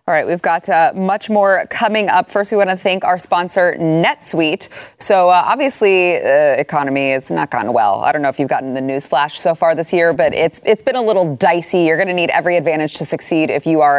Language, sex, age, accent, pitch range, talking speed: English, female, 20-39, American, 160-200 Hz, 245 wpm